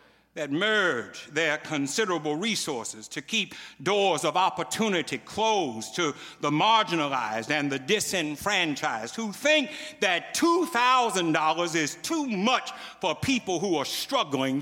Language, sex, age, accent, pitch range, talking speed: English, male, 60-79, American, 140-215 Hz, 120 wpm